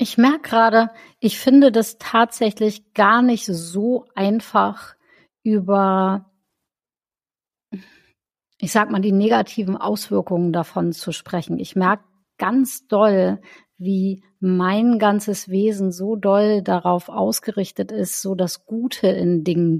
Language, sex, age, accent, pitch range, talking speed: German, female, 50-69, German, 190-225 Hz, 120 wpm